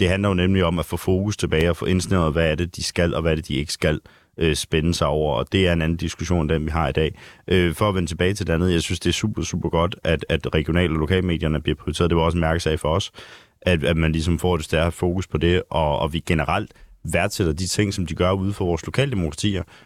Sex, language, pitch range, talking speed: male, Danish, 80-100 Hz, 280 wpm